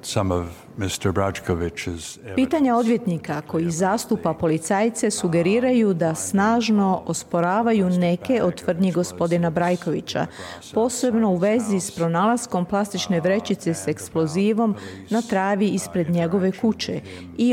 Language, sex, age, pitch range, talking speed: Croatian, female, 40-59, 170-215 Hz, 95 wpm